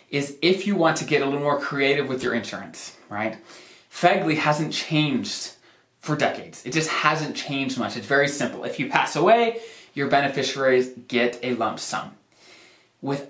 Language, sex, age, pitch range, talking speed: English, male, 20-39, 125-165 Hz, 170 wpm